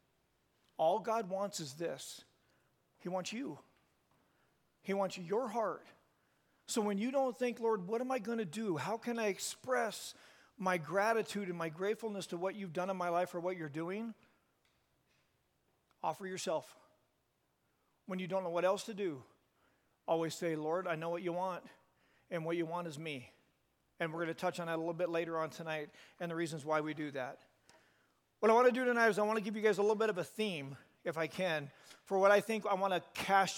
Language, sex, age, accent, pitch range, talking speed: English, male, 40-59, American, 180-215 Hz, 210 wpm